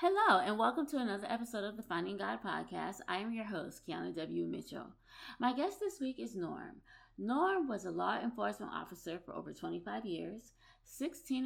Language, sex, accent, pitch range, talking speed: English, female, American, 180-245 Hz, 185 wpm